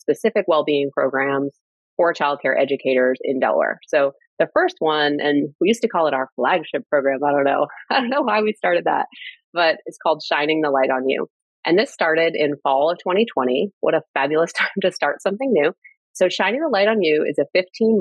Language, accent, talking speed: English, American, 215 wpm